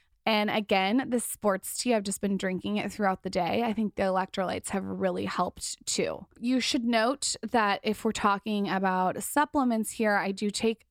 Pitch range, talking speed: 190-215 Hz, 185 wpm